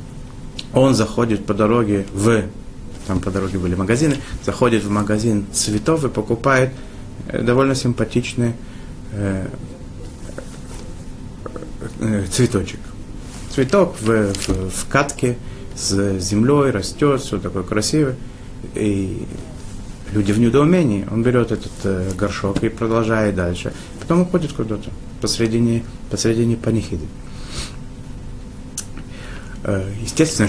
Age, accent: 30-49, native